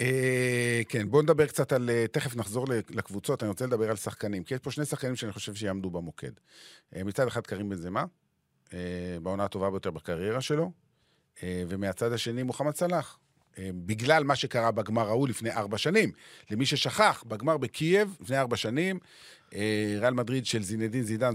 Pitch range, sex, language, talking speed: 105-140 Hz, male, Hebrew, 175 wpm